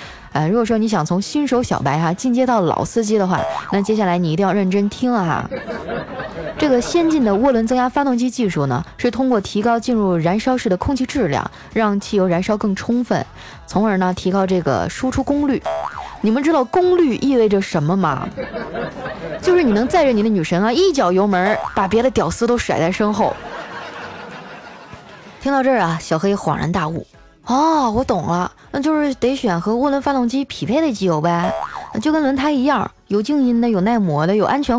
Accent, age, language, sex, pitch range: native, 20-39, Chinese, female, 175-255 Hz